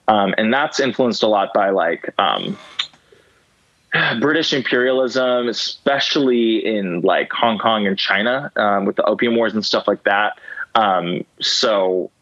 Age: 20-39